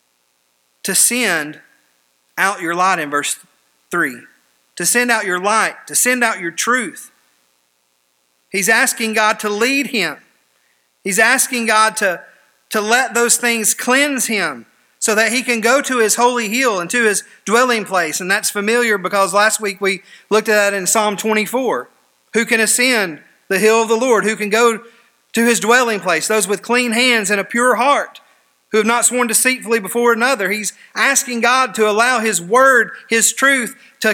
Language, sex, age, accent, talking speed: English, male, 40-59, American, 180 wpm